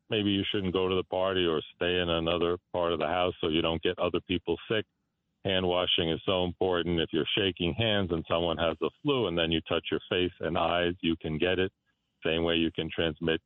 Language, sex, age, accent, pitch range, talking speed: English, male, 40-59, American, 85-95 Hz, 230 wpm